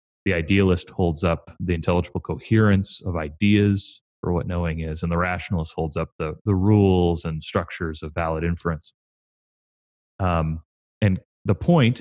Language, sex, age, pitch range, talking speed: English, male, 30-49, 85-110 Hz, 150 wpm